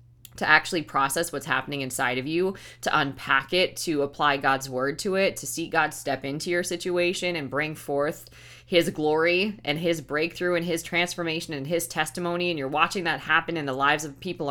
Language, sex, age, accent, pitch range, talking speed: English, female, 20-39, American, 145-190 Hz, 200 wpm